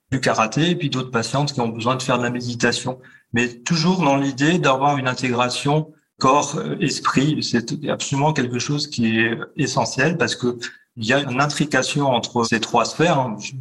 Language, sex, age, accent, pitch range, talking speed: French, male, 40-59, French, 115-135 Hz, 180 wpm